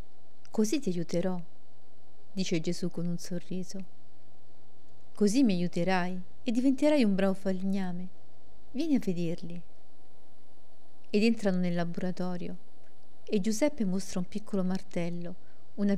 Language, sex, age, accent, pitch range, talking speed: Italian, female, 40-59, native, 180-215 Hz, 115 wpm